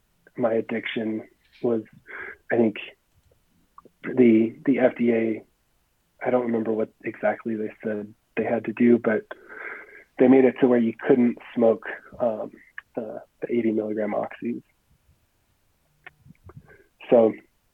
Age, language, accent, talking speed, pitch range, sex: 30-49, English, American, 120 wpm, 115-130 Hz, male